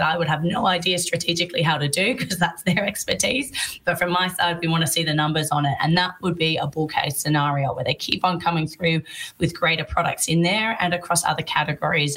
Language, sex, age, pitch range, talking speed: English, female, 20-39, 150-180 Hz, 235 wpm